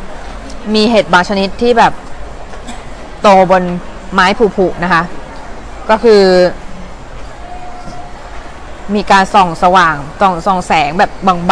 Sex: female